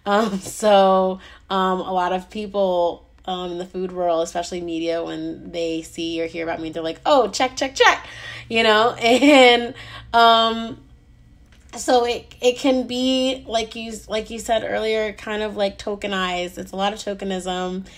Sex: female